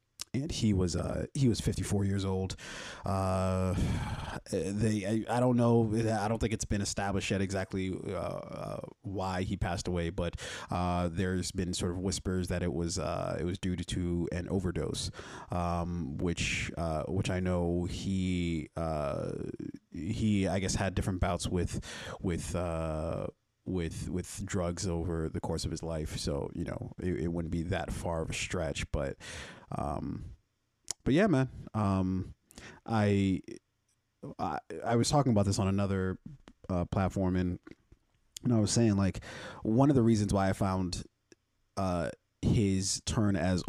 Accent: American